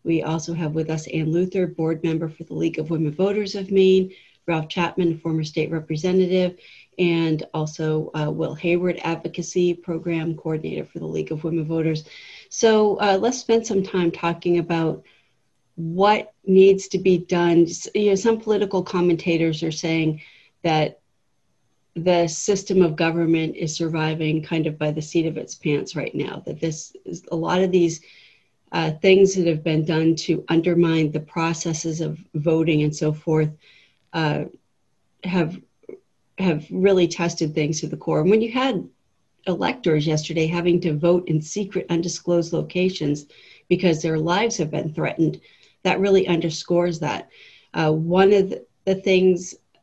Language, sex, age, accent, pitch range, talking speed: English, female, 40-59, American, 160-185 Hz, 160 wpm